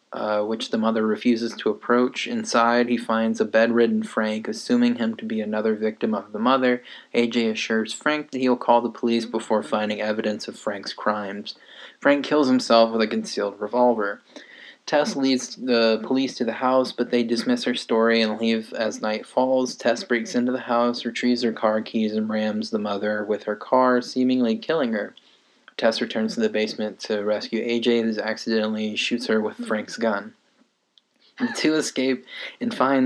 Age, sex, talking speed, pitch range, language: 20-39, male, 180 wpm, 110-125 Hz, English